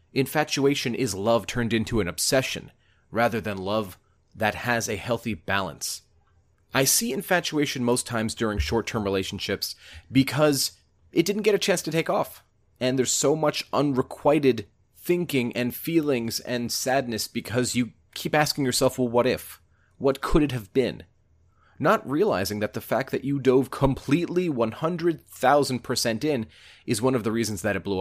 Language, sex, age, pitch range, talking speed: English, male, 30-49, 95-125 Hz, 160 wpm